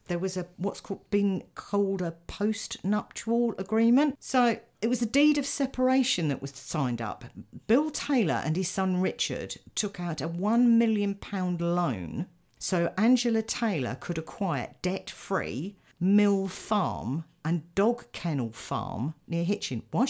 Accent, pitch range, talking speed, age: British, 140-200 Hz, 145 wpm, 50-69